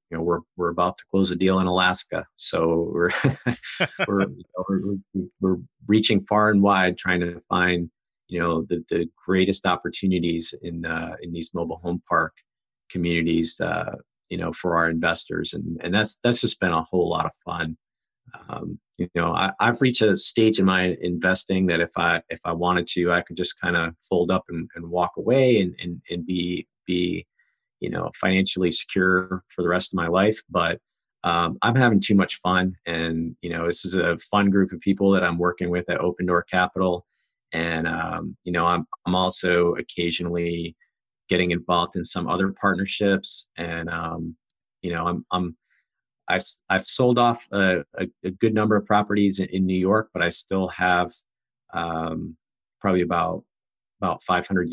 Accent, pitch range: American, 85-95 Hz